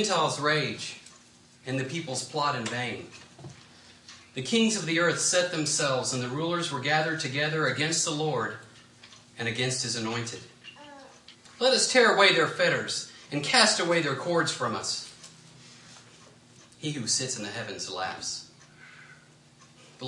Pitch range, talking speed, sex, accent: 120-165 Hz, 150 wpm, male, American